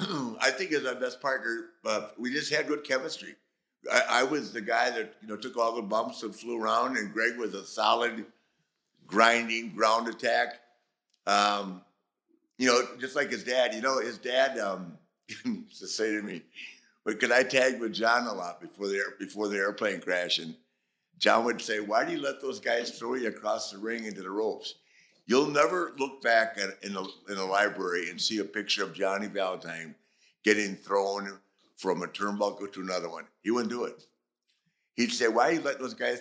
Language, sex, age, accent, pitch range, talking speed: English, male, 60-79, American, 105-135 Hz, 200 wpm